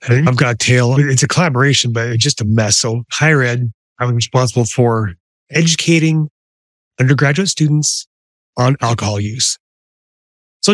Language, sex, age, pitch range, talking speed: English, male, 30-49, 115-145 Hz, 140 wpm